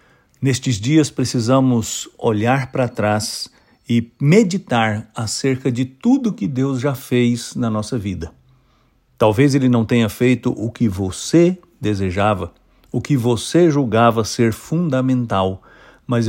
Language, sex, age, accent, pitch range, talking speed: English, male, 50-69, Brazilian, 110-135 Hz, 125 wpm